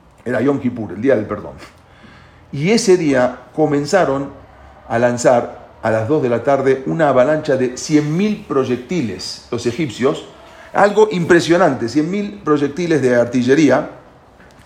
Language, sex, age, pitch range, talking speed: English, male, 40-59, 135-185 Hz, 130 wpm